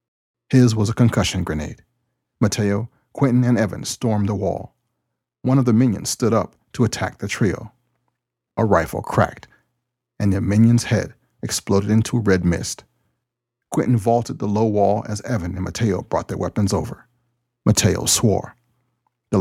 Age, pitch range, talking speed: 40-59, 100-120 Hz, 150 wpm